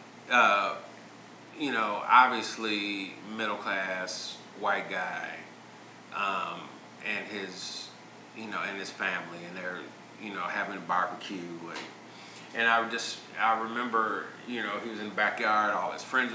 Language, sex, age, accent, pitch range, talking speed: English, male, 30-49, American, 110-165 Hz, 145 wpm